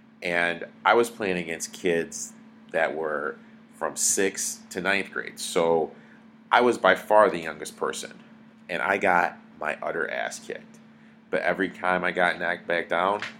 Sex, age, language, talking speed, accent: male, 40-59, English, 160 wpm, American